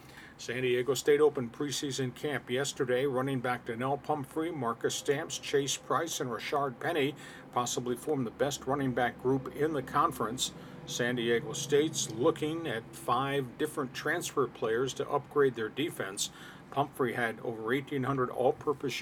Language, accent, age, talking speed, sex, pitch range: English, American, 50-69, 145 wpm, male, 125-150 Hz